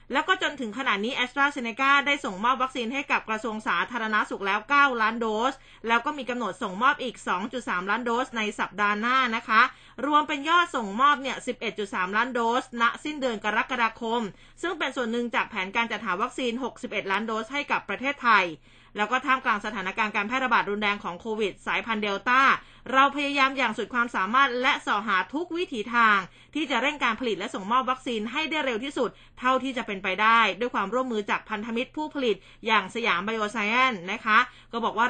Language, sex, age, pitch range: Thai, female, 20-39, 215-275 Hz